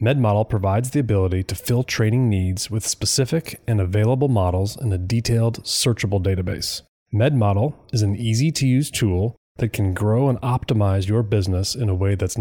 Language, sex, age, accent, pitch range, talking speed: English, male, 30-49, American, 100-125 Hz, 175 wpm